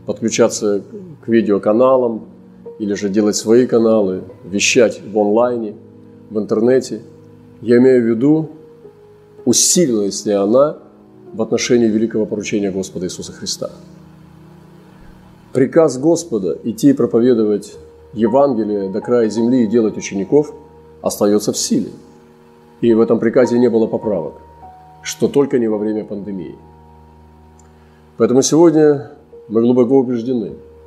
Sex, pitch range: male, 100-135 Hz